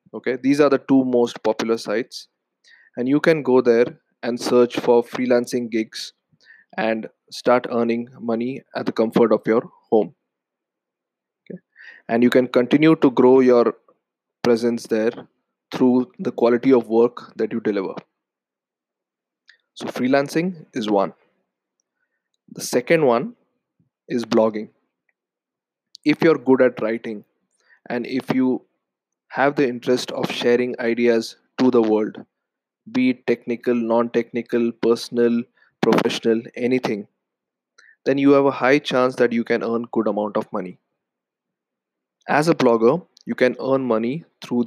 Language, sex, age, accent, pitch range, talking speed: English, male, 20-39, Indian, 115-130 Hz, 135 wpm